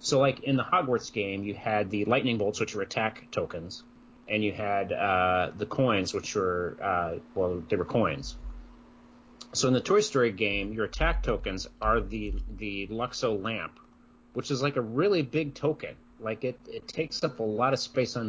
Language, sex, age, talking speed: English, male, 30-49, 195 wpm